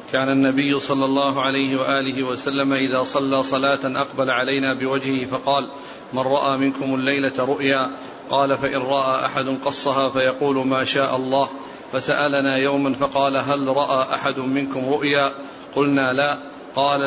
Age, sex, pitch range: 40-59, male, 135-145 Hz